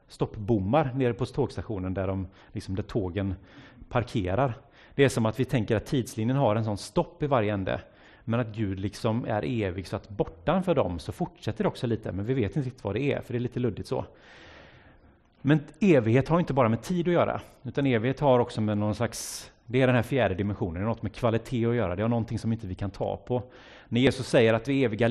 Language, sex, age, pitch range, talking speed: Swedish, male, 30-49, 100-130 Hz, 230 wpm